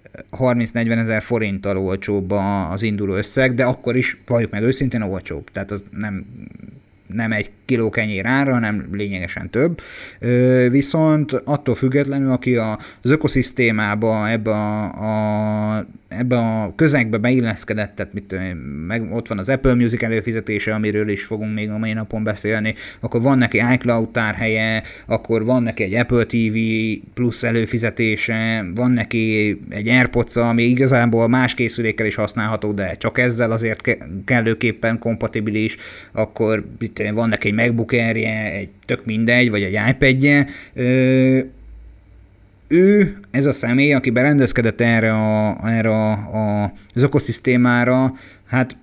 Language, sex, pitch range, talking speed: Hungarian, male, 105-125 Hz, 125 wpm